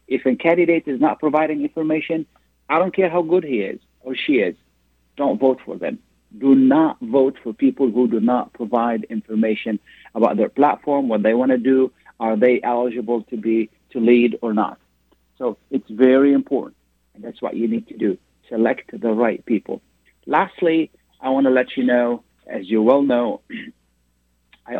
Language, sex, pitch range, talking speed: Arabic, male, 105-130 Hz, 180 wpm